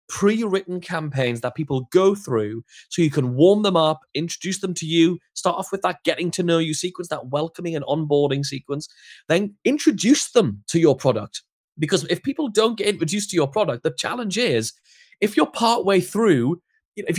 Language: English